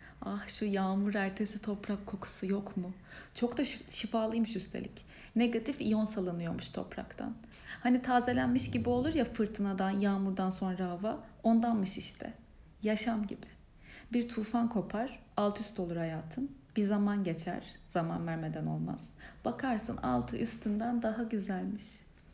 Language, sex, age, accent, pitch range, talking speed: Turkish, female, 40-59, native, 190-235 Hz, 125 wpm